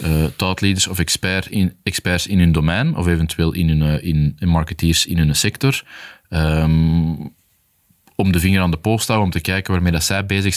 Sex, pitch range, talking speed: male, 85-100 Hz, 200 wpm